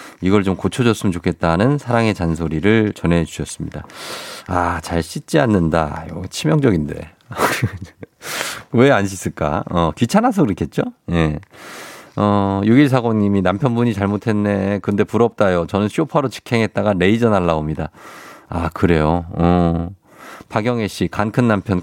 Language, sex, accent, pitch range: Korean, male, native, 90-130 Hz